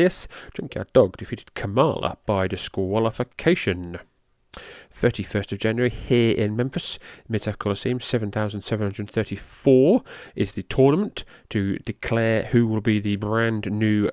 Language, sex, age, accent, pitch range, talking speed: English, male, 30-49, British, 100-115 Hz, 110 wpm